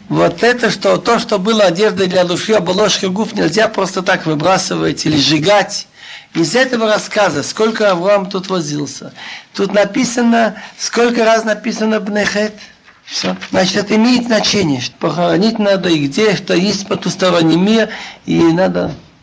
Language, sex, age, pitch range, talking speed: Russian, male, 60-79, 180-220 Hz, 135 wpm